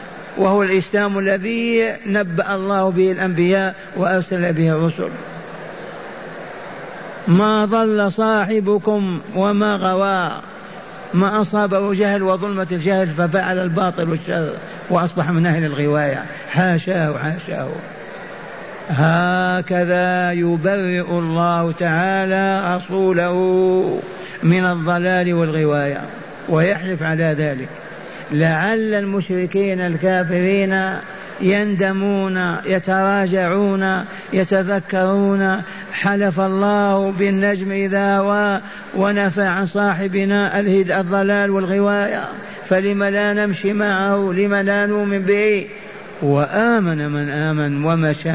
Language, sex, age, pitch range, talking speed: Arabic, male, 50-69, 180-200 Hz, 85 wpm